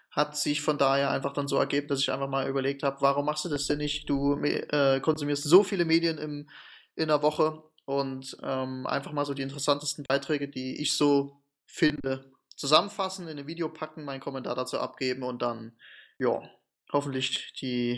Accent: German